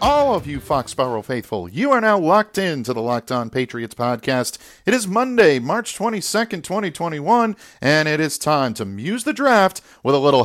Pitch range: 120-165 Hz